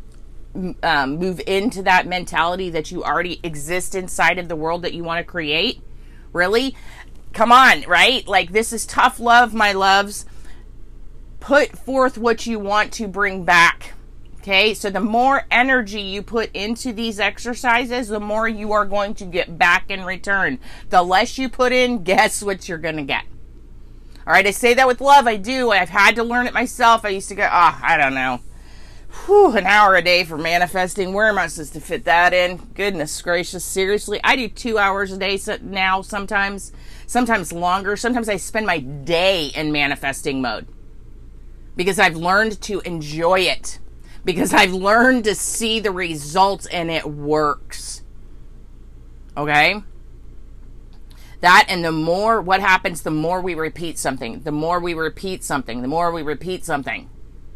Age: 30-49